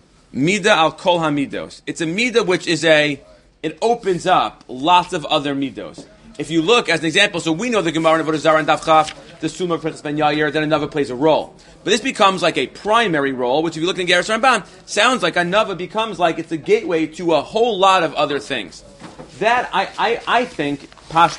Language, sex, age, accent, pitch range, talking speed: English, male, 30-49, American, 145-175 Hz, 215 wpm